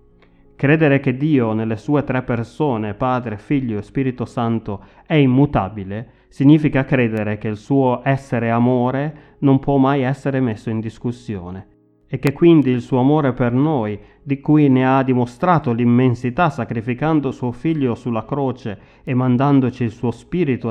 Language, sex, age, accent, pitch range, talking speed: Italian, male, 30-49, native, 115-135 Hz, 150 wpm